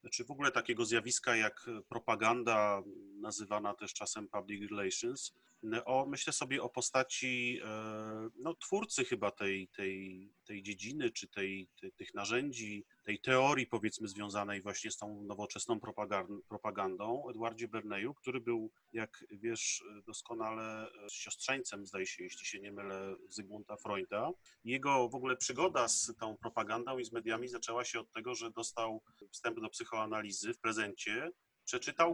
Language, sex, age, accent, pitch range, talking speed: Polish, male, 30-49, native, 105-125 Hz, 150 wpm